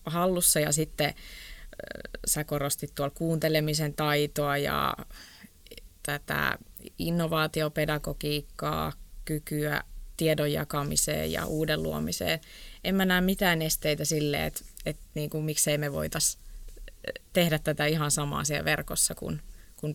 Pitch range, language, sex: 150-185 Hz, Finnish, female